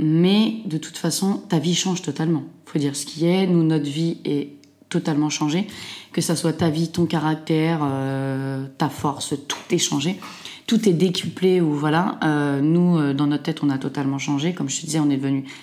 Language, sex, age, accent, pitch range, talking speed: French, female, 20-39, French, 145-170 Hz, 205 wpm